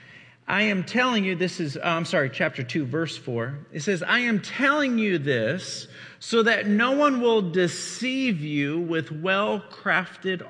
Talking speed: 160 wpm